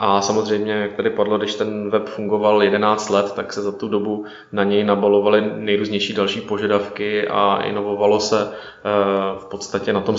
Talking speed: 170 wpm